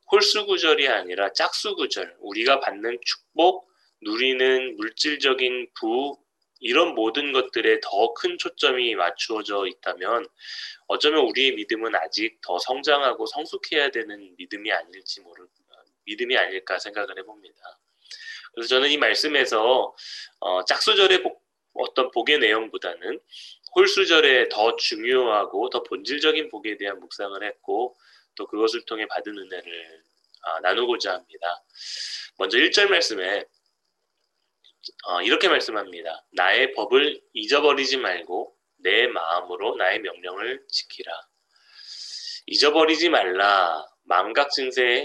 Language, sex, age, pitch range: Korean, male, 20-39, 330-435 Hz